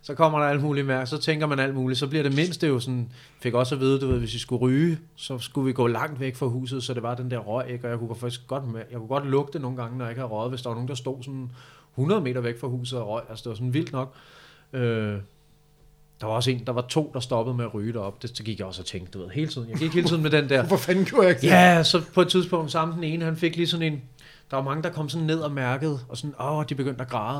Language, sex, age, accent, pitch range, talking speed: Danish, male, 30-49, native, 125-155 Hz, 320 wpm